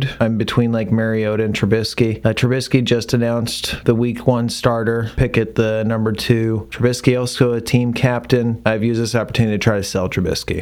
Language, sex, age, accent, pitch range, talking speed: English, male, 30-49, American, 100-120 Hz, 180 wpm